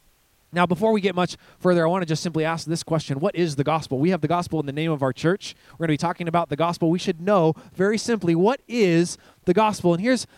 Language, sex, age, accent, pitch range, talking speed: English, male, 20-39, American, 155-205 Hz, 270 wpm